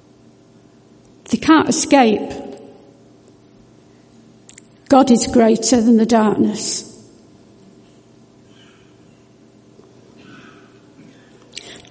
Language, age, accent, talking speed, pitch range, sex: English, 60-79, British, 50 wpm, 235-275 Hz, female